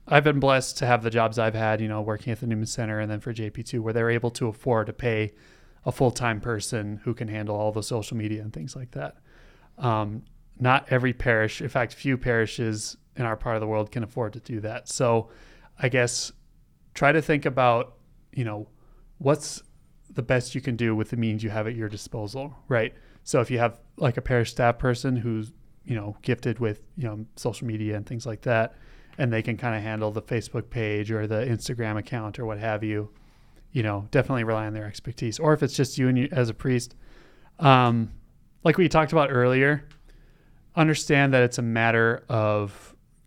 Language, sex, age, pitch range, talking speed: English, male, 30-49, 110-130 Hz, 210 wpm